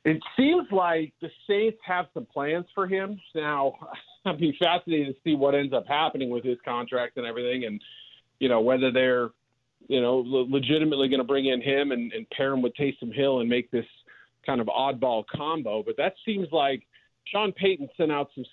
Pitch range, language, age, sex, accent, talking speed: 125-160 Hz, English, 40-59, male, American, 200 wpm